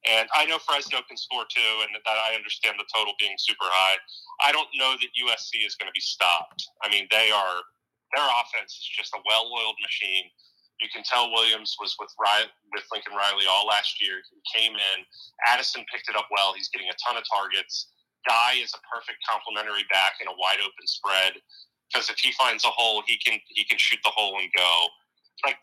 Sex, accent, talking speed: male, American, 215 wpm